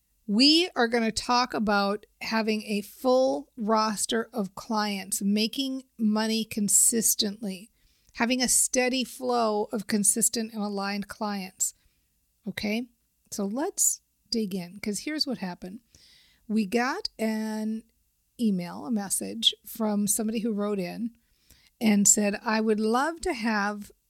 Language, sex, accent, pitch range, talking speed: English, female, American, 195-235 Hz, 125 wpm